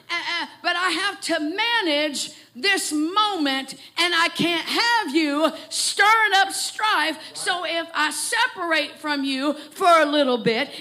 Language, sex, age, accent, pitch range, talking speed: English, female, 50-69, American, 295-360 Hz, 150 wpm